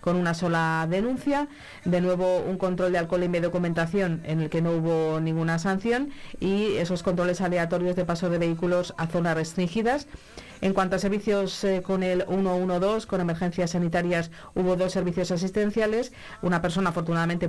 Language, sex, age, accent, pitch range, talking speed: Spanish, female, 40-59, Spanish, 170-195 Hz, 170 wpm